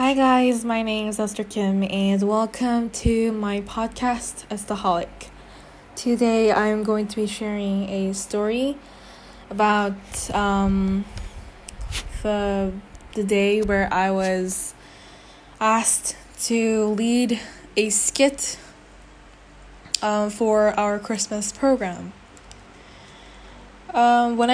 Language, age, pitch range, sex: Korean, 10-29, 195-220 Hz, female